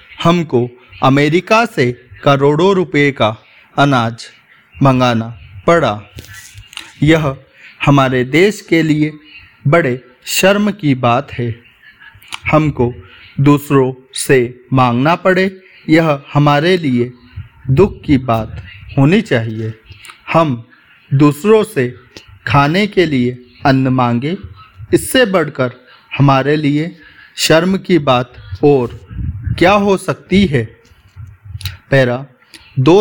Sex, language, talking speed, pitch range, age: male, Hindi, 100 wpm, 115-155 Hz, 40-59